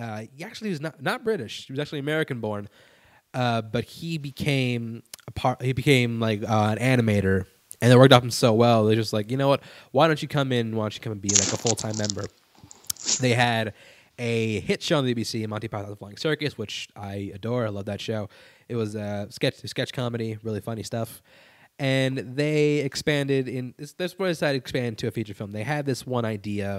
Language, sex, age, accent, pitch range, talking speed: English, male, 20-39, American, 110-140 Hz, 220 wpm